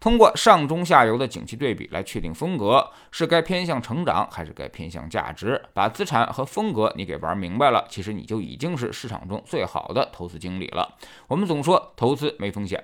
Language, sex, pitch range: Chinese, male, 95-140 Hz